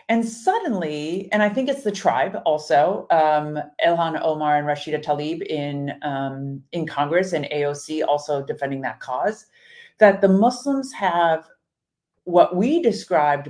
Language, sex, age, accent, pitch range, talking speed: English, female, 50-69, American, 155-220 Hz, 140 wpm